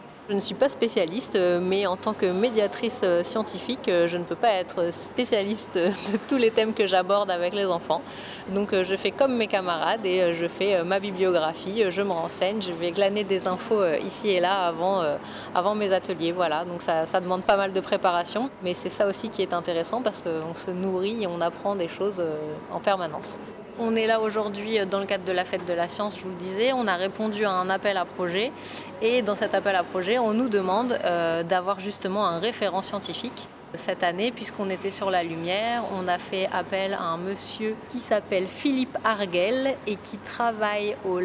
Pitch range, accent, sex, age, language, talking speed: 180-215 Hz, French, female, 30-49, French, 205 wpm